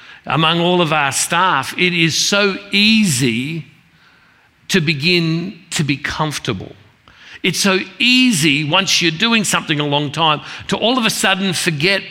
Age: 50-69